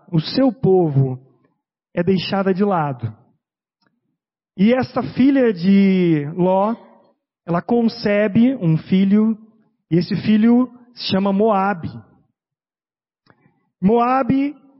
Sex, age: male, 40-59